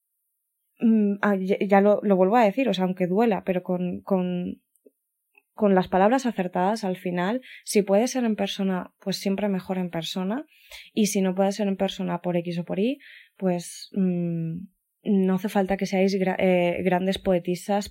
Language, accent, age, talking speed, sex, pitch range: Spanish, Spanish, 20-39, 175 wpm, female, 175-195 Hz